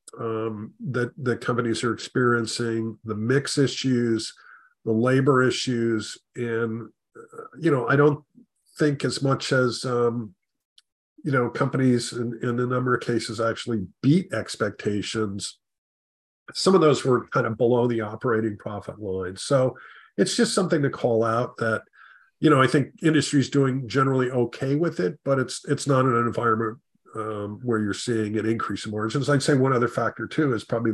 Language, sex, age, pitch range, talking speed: English, male, 50-69, 110-135 Hz, 170 wpm